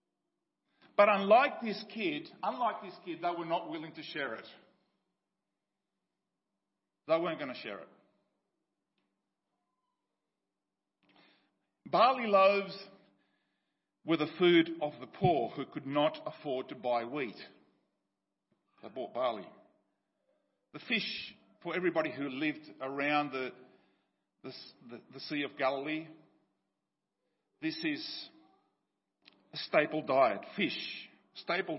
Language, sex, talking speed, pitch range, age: English, male, 110 wpm, 130-175 Hz, 50-69